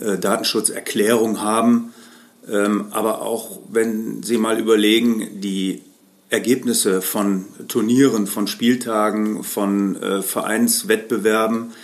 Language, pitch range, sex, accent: German, 100-115 Hz, male, German